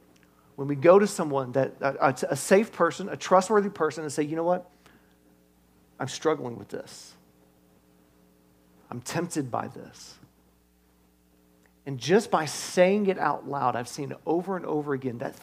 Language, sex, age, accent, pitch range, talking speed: English, male, 40-59, American, 115-170 Hz, 165 wpm